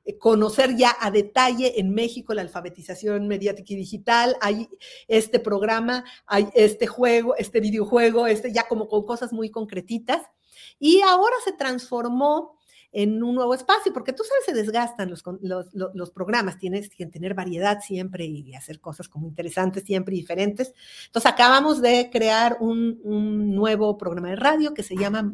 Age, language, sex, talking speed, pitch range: 50-69, Spanish, female, 170 wpm, 190-245 Hz